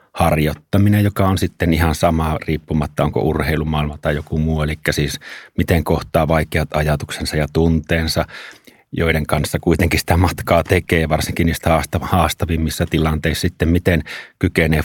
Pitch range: 75-85 Hz